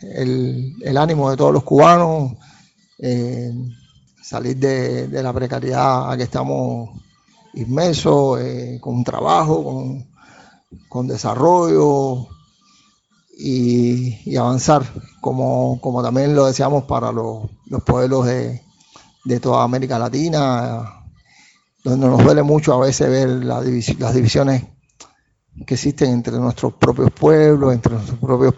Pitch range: 125-140 Hz